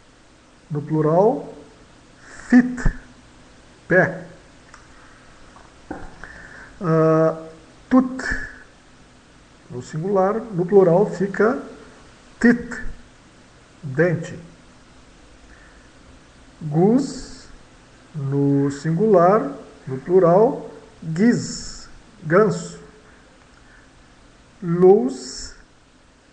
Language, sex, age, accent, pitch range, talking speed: English, male, 50-69, Brazilian, 150-200 Hz, 45 wpm